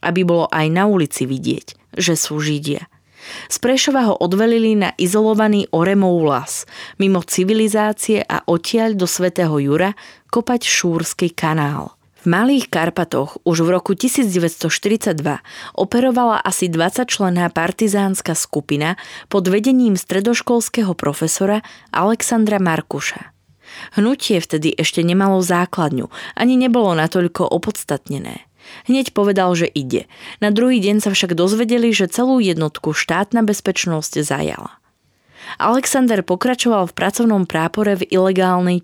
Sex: female